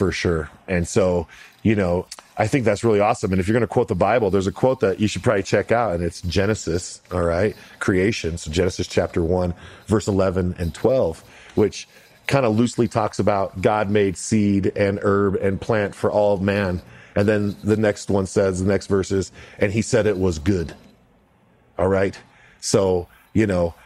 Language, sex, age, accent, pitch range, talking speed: English, male, 40-59, American, 90-115 Hz, 200 wpm